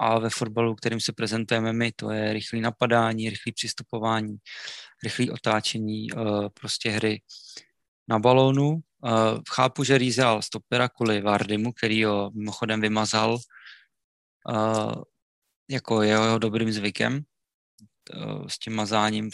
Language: Czech